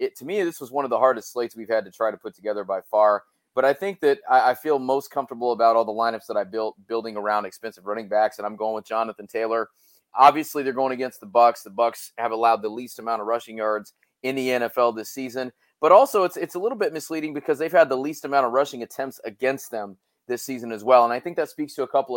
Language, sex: English, male